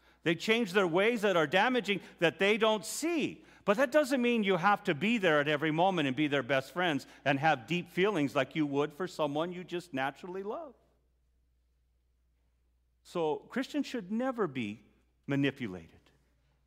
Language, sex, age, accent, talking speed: English, male, 50-69, American, 170 wpm